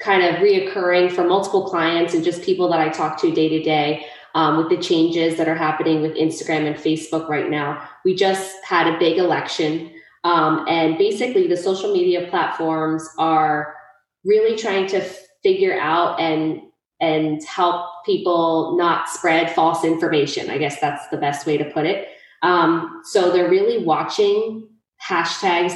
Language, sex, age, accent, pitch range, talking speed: English, female, 20-39, American, 155-190 Hz, 165 wpm